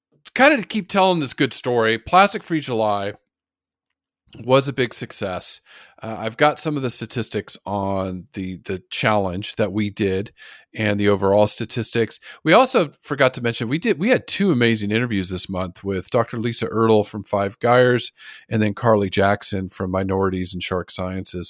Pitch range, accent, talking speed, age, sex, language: 95-120 Hz, American, 175 wpm, 40-59, male, English